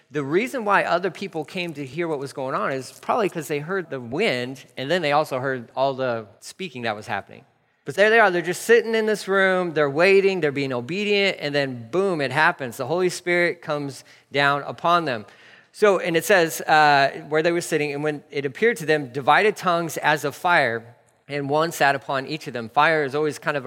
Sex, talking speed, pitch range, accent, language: male, 225 wpm, 125-155 Hz, American, English